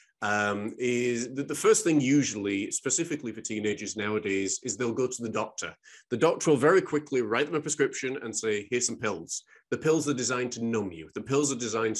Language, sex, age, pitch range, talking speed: English, male, 30-49, 120-160 Hz, 210 wpm